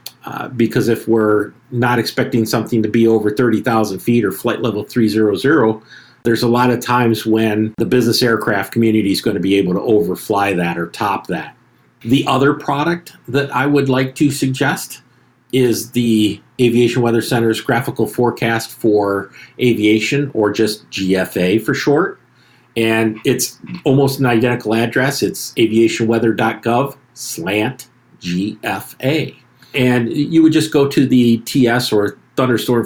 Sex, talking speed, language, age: male, 145 wpm, English, 50-69